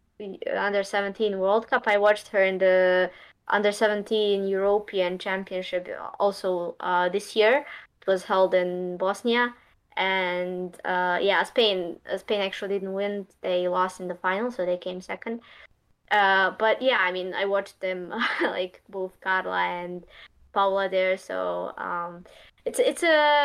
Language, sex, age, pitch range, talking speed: English, female, 20-39, 185-225 Hz, 150 wpm